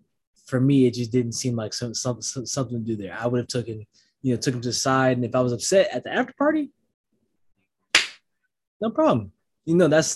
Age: 20-39